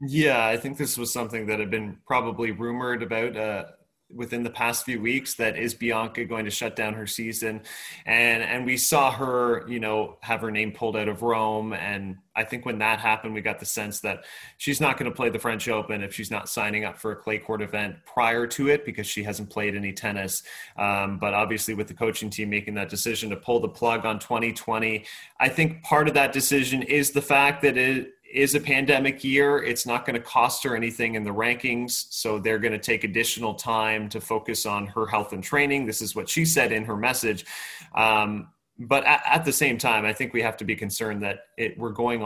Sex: male